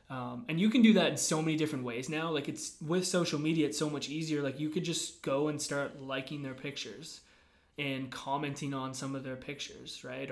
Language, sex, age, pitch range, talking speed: English, male, 20-39, 130-150 Hz, 225 wpm